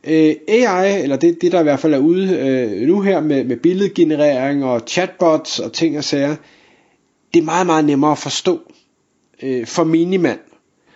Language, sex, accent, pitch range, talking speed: Danish, male, native, 145-185 Hz, 180 wpm